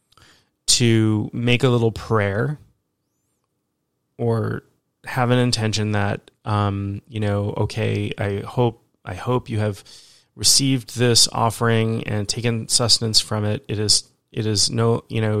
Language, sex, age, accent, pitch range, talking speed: English, male, 30-49, American, 105-115 Hz, 135 wpm